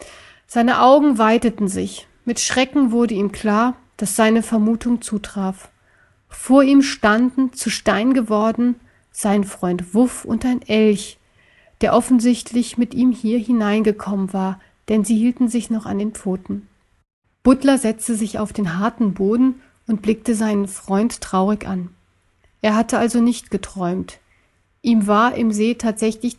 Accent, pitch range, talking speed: German, 205-240 Hz, 145 wpm